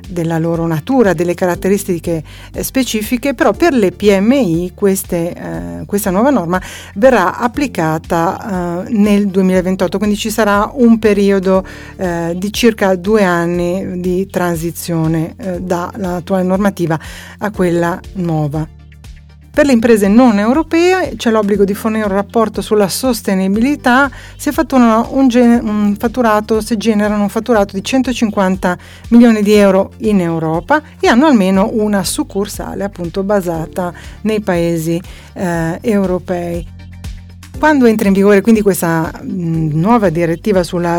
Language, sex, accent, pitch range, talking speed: Italian, female, native, 175-225 Hz, 120 wpm